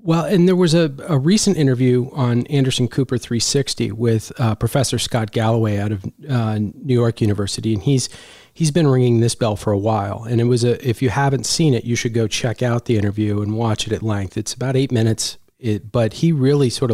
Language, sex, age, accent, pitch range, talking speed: English, male, 40-59, American, 110-135 Hz, 225 wpm